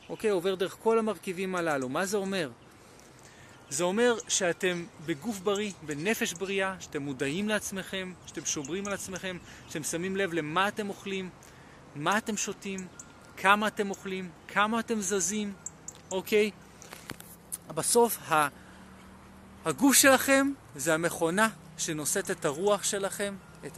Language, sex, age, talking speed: Hebrew, male, 30-49, 130 wpm